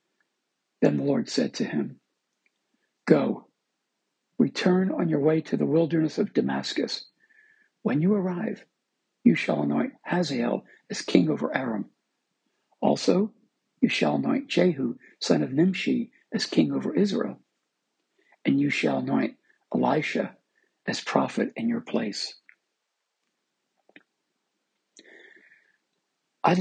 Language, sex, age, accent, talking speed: English, male, 60-79, American, 115 wpm